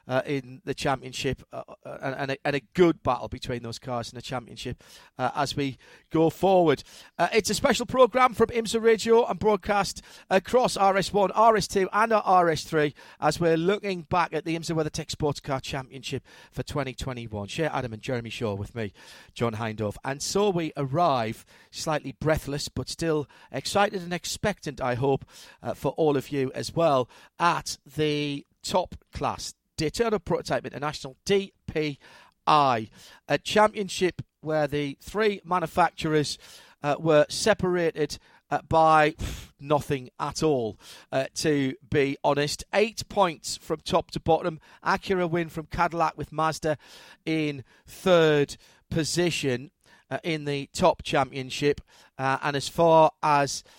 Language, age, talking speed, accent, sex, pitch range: English, 40-59, 145 wpm, British, male, 135-175 Hz